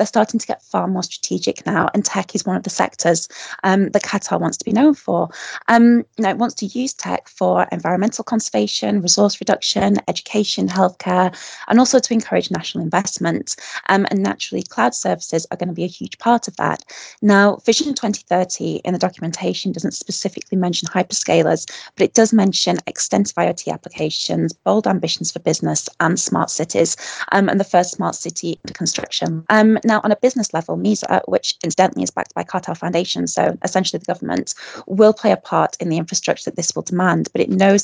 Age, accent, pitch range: 20-39, British, 175-215 Hz